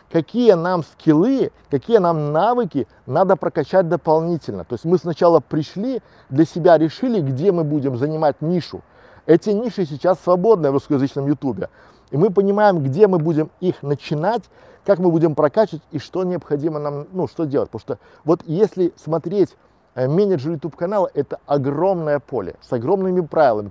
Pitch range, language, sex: 145-185 Hz, Russian, male